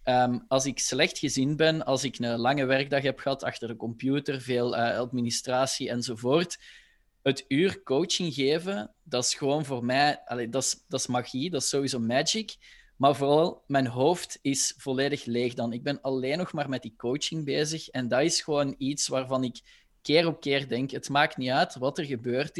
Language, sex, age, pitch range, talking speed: Dutch, male, 20-39, 125-155 Hz, 195 wpm